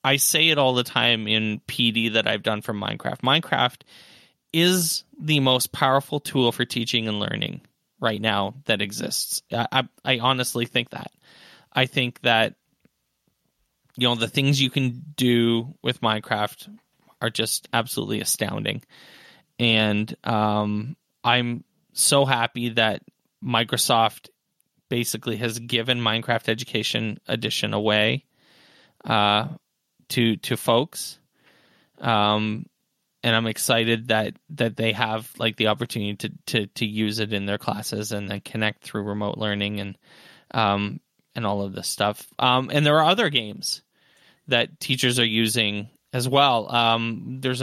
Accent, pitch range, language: American, 110-130 Hz, English